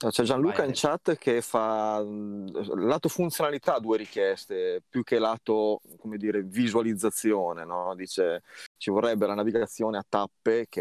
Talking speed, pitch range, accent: 140 wpm, 95-115 Hz, native